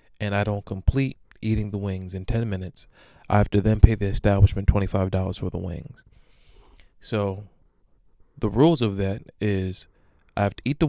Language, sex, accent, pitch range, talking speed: English, male, American, 100-115 Hz, 175 wpm